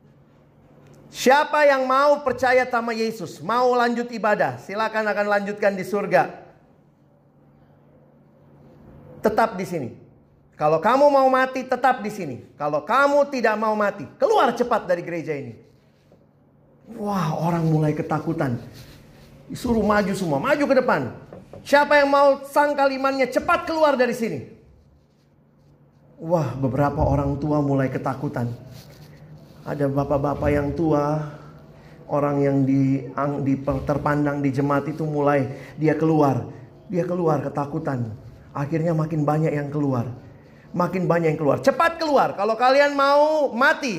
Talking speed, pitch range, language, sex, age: 125 wpm, 140-230 Hz, Indonesian, male, 40-59